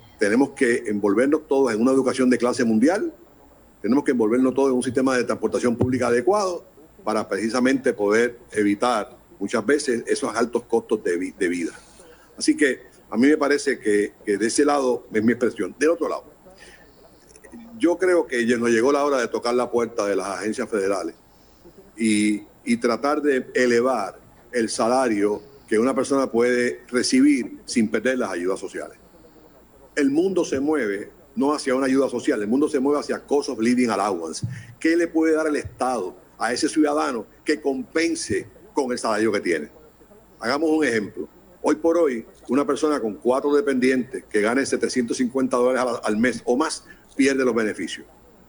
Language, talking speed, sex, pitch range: Spanish, 170 wpm, male, 120-150 Hz